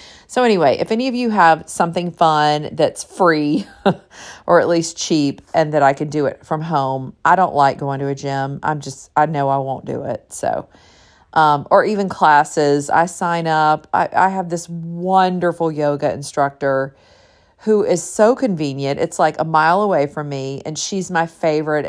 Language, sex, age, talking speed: English, female, 40-59, 185 wpm